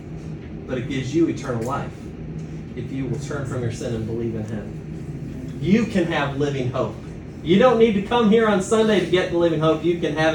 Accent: American